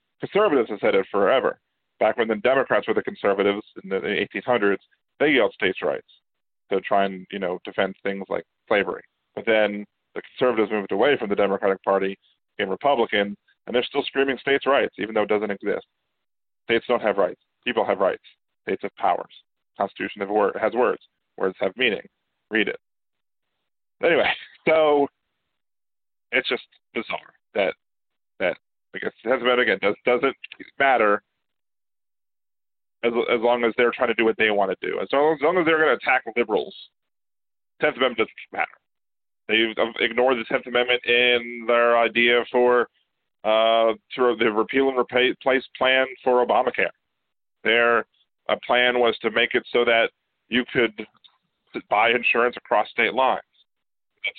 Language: English